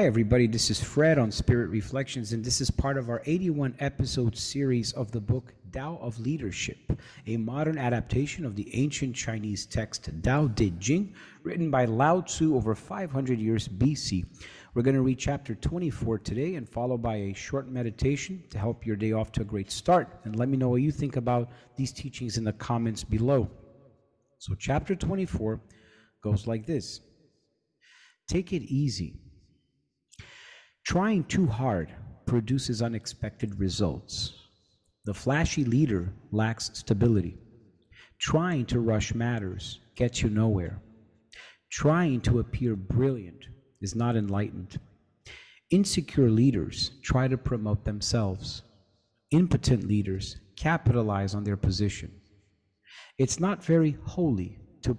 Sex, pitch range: male, 105-135 Hz